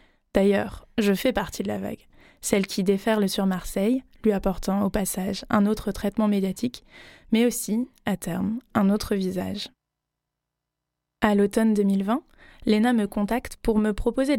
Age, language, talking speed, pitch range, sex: 20-39, French, 150 wpm, 200-225 Hz, female